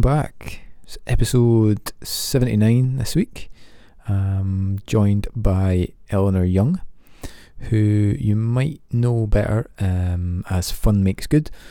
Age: 20-39